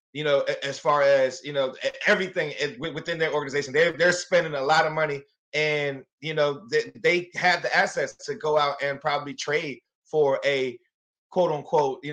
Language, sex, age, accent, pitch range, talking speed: English, male, 20-39, American, 145-180 Hz, 190 wpm